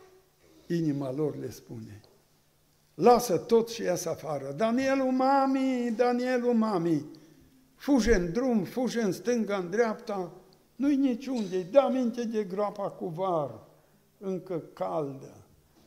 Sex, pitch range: male, 145-200 Hz